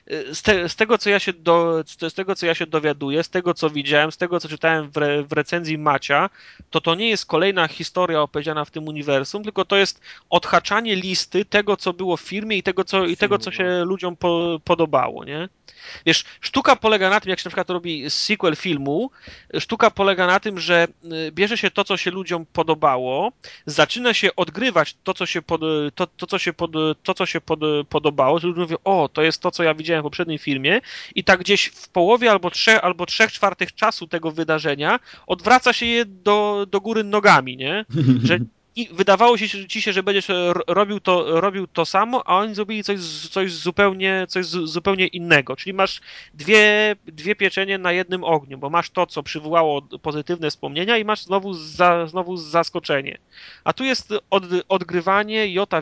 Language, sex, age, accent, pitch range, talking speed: Polish, male, 30-49, native, 160-200 Hz, 185 wpm